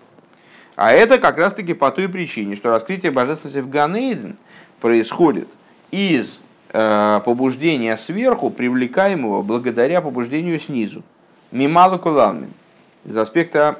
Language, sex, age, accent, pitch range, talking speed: Russian, male, 50-69, native, 130-170 Hz, 105 wpm